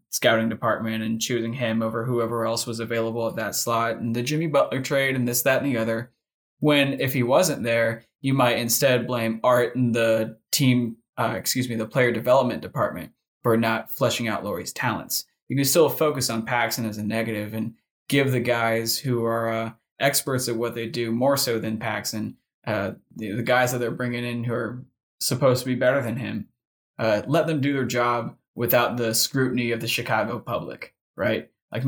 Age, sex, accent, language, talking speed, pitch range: 20-39, male, American, English, 200 wpm, 115-130 Hz